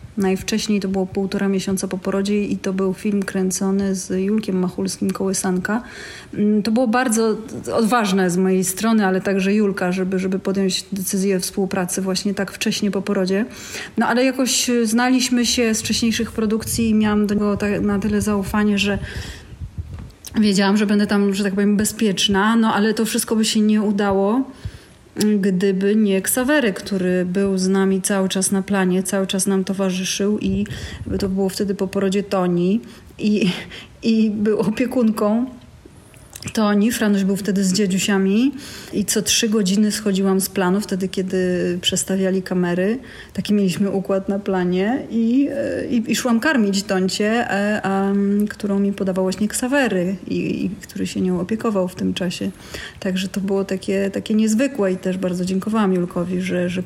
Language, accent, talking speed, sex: Polish, native, 160 wpm, female